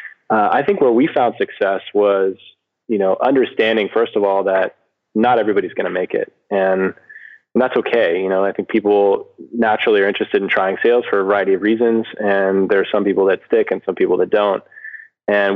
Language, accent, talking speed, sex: English, American, 210 wpm, male